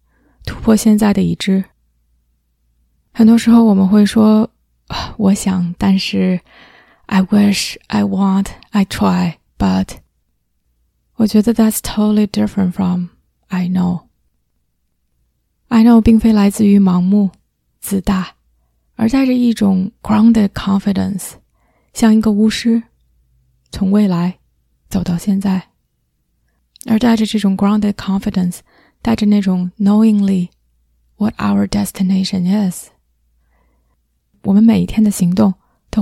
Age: 20-39